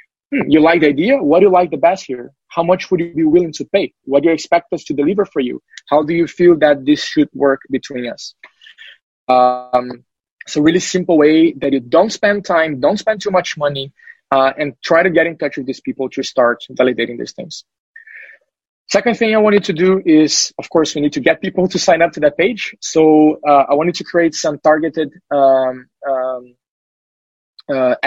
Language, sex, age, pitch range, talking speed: English, male, 20-39, 135-175 Hz, 215 wpm